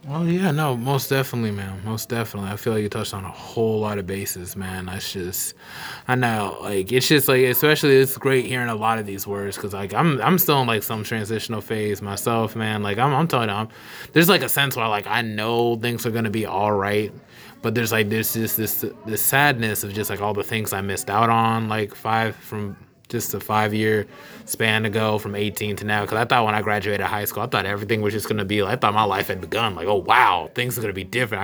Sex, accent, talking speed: male, American, 250 wpm